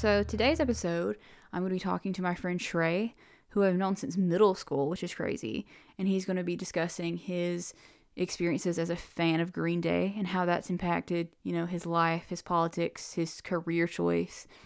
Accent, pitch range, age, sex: American, 165-190 Hz, 20-39, female